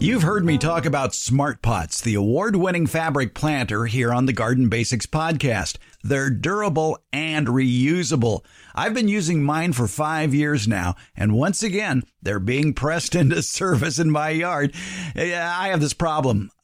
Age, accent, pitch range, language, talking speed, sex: 50-69, American, 125-175 Hz, English, 160 wpm, male